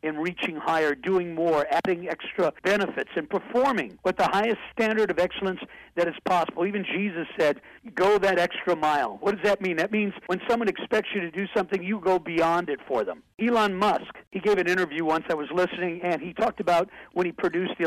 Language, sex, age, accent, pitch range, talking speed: English, male, 60-79, American, 170-205 Hz, 210 wpm